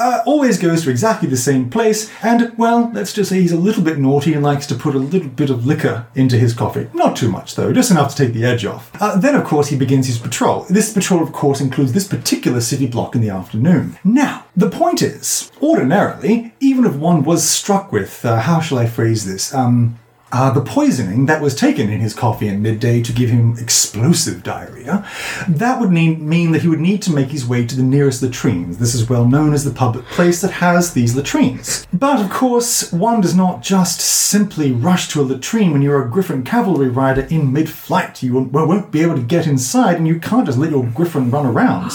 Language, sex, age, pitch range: English, male, 30-49, 135-195 Hz